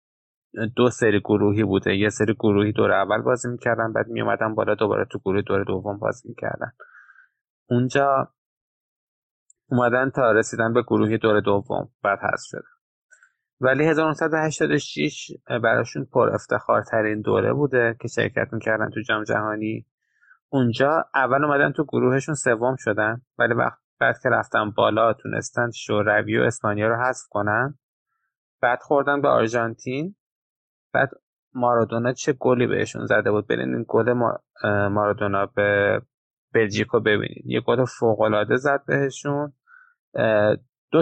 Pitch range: 110-140 Hz